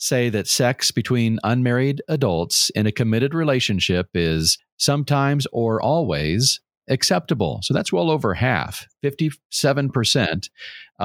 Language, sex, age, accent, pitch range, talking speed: English, male, 40-59, American, 105-135 Hz, 115 wpm